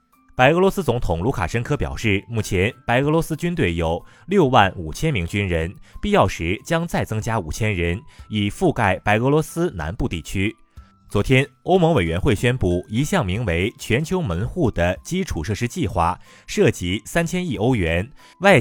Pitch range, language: 90-150 Hz, Chinese